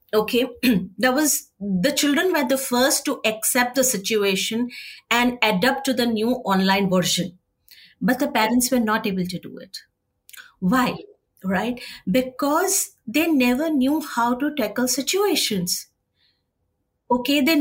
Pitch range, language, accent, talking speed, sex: 225-290 Hz, English, Indian, 135 wpm, female